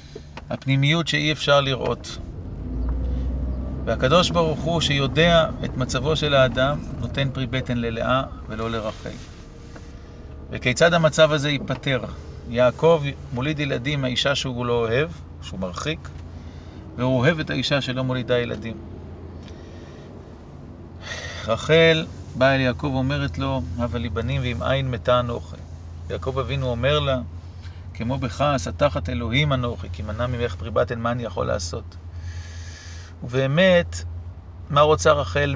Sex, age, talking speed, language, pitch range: male, 40-59, 120 wpm, Hebrew, 95-140 Hz